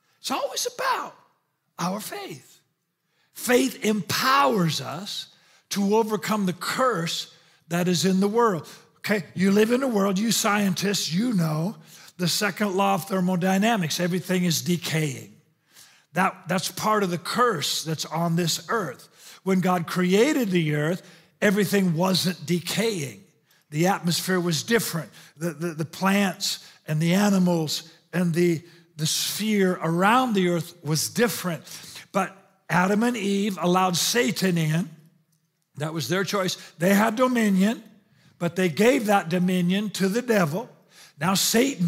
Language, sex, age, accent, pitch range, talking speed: English, male, 50-69, American, 170-205 Hz, 140 wpm